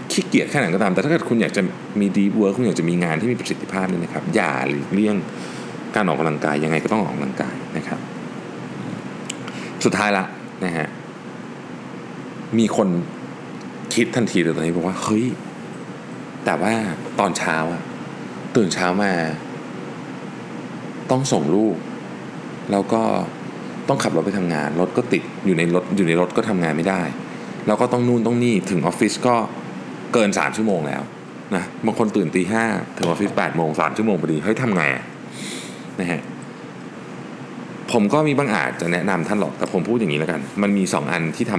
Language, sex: Thai, male